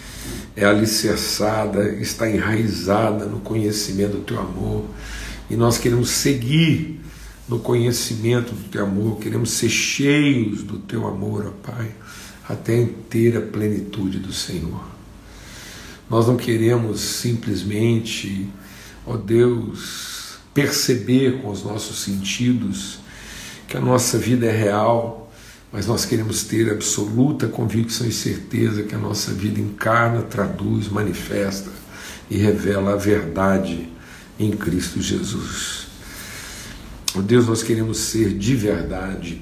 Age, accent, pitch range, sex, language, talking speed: 60-79, Brazilian, 100-115 Hz, male, Portuguese, 120 wpm